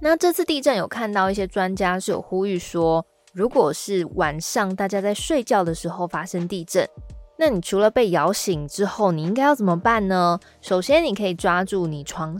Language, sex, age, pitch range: Chinese, female, 20-39, 165-210 Hz